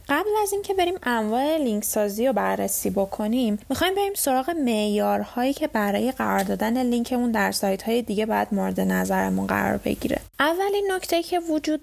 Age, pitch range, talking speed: 10-29, 210-285 Hz, 155 wpm